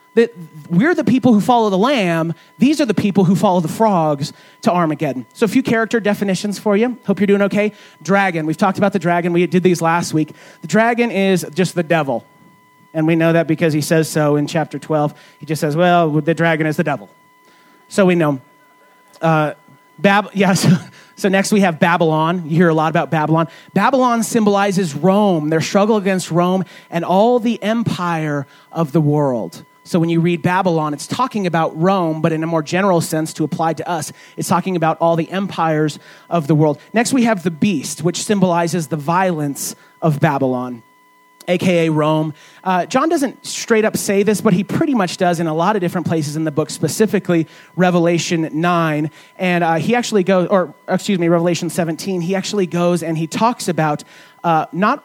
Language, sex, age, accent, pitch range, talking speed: English, male, 30-49, American, 160-195 Hz, 195 wpm